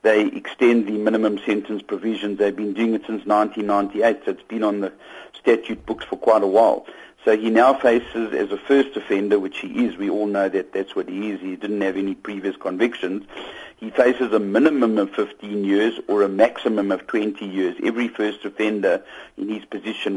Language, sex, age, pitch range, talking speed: English, male, 50-69, 100-115 Hz, 200 wpm